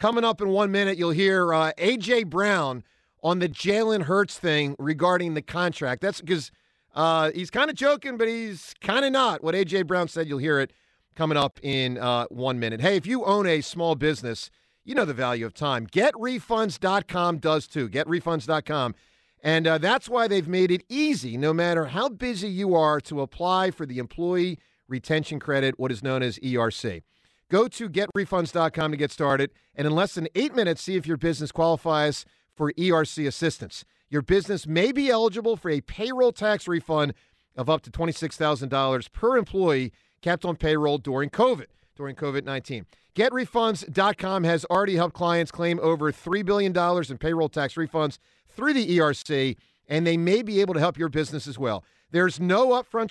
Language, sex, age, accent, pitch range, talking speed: English, male, 40-59, American, 145-200 Hz, 180 wpm